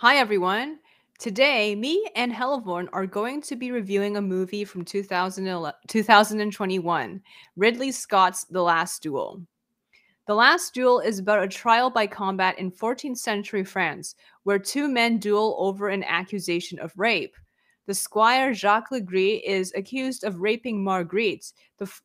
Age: 20-39